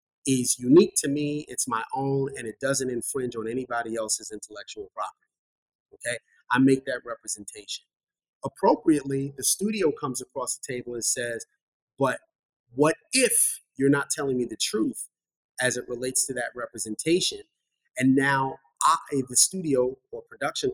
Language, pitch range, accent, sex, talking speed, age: English, 130-215 Hz, American, male, 150 wpm, 30-49